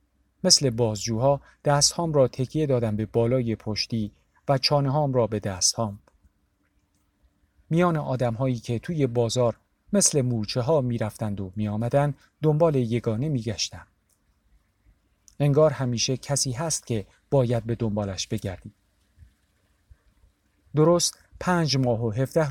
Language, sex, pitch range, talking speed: Persian, male, 100-140 Hz, 125 wpm